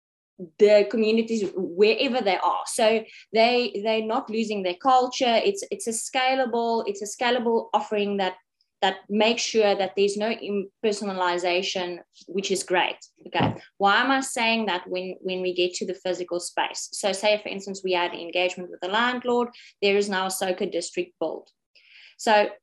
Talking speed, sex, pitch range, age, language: 165 wpm, female, 185-225 Hz, 20-39, English